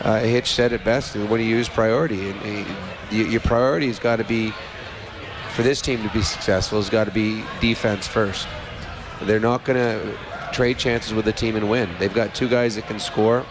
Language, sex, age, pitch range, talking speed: English, male, 30-49, 110-125 Hz, 205 wpm